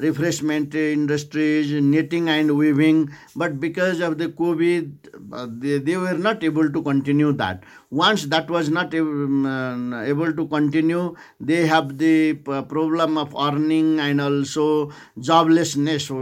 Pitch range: 140-160 Hz